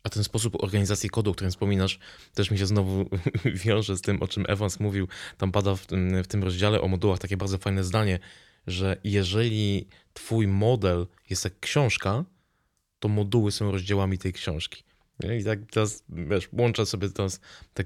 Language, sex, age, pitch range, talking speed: Polish, male, 20-39, 100-115 Hz, 170 wpm